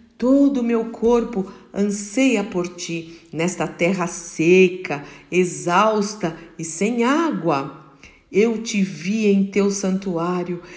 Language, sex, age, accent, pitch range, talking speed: Portuguese, female, 50-69, Brazilian, 185-250 Hz, 110 wpm